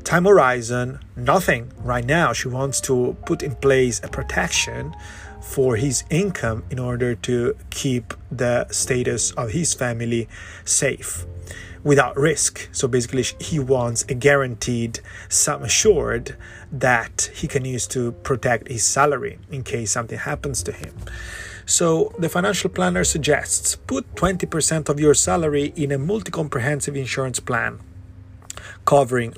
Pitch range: 110-145 Hz